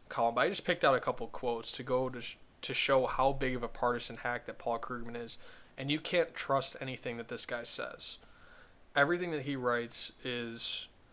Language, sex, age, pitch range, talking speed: English, male, 20-39, 120-135 Hz, 205 wpm